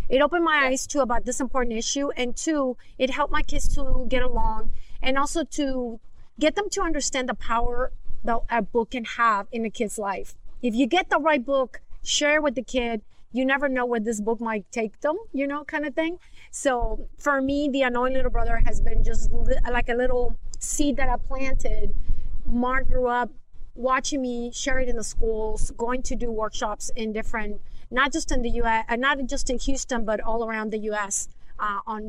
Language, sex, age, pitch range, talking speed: English, female, 30-49, 230-290 Hz, 210 wpm